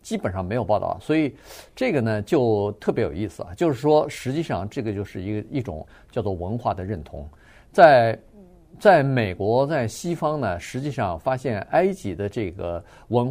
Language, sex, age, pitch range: Chinese, male, 50-69, 100-130 Hz